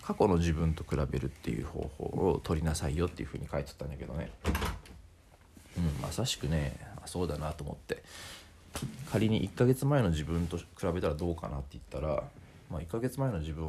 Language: Japanese